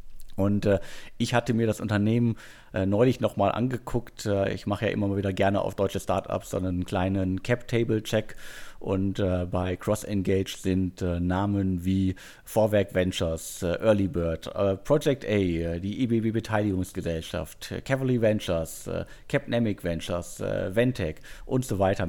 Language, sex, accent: German, male, German